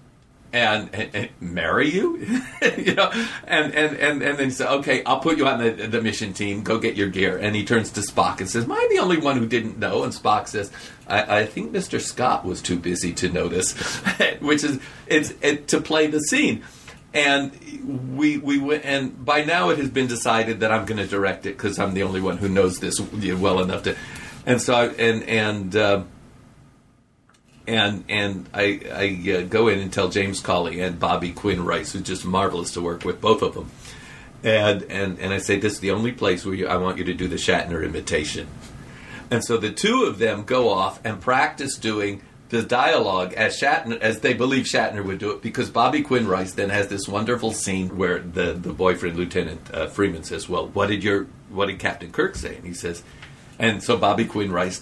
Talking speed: 220 wpm